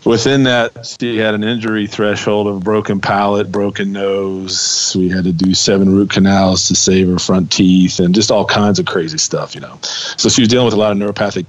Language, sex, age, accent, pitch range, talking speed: English, male, 40-59, American, 95-110 Hz, 225 wpm